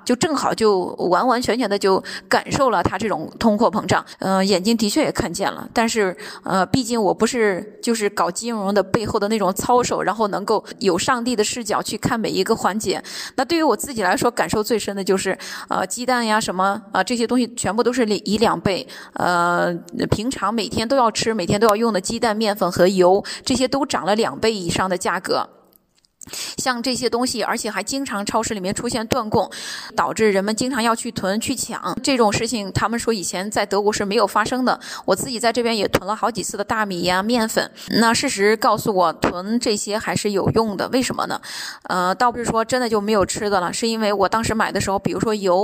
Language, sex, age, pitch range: Chinese, female, 20-39, 195-235 Hz